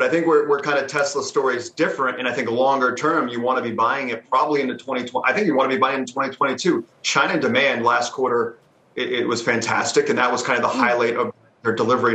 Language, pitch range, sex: English, 115-145 Hz, male